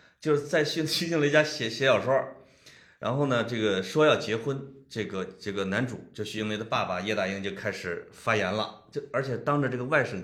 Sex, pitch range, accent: male, 120-195 Hz, native